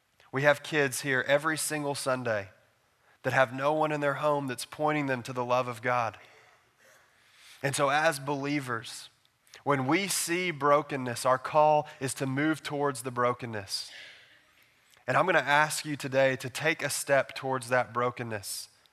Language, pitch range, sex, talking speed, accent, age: English, 125-145 Hz, male, 165 wpm, American, 20-39